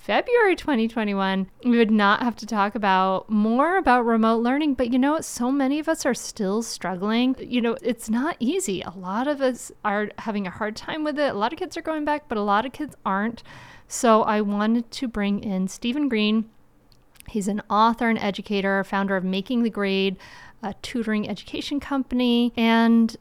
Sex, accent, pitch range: female, American, 200-265 Hz